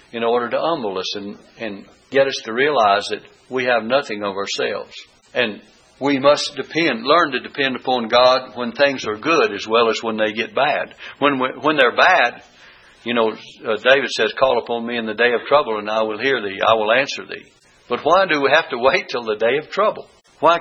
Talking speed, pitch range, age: 220 wpm, 110-135 Hz, 60-79